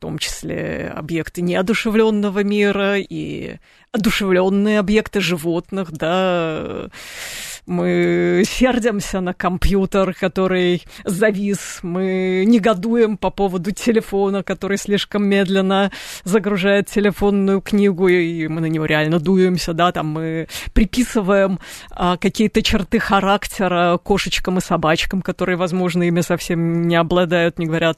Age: 20-39